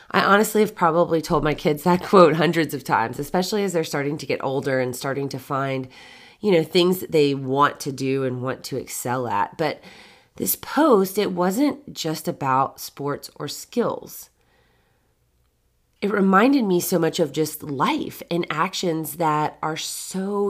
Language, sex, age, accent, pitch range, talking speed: English, female, 30-49, American, 145-200 Hz, 175 wpm